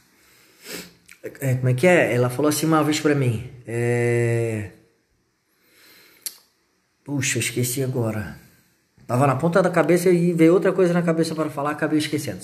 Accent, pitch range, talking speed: Brazilian, 140-200 Hz, 150 wpm